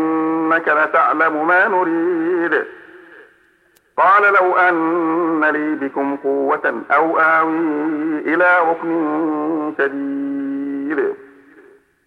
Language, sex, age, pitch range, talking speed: Arabic, male, 50-69, 155-200 Hz, 75 wpm